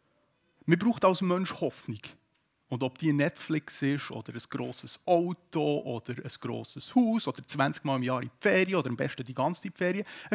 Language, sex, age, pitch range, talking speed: German, male, 30-49, 155-220 Hz, 195 wpm